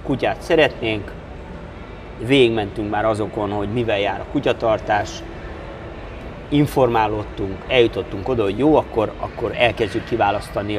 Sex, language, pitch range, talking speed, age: male, Hungarian, 95-140 Hz, 105 wpm, 30-49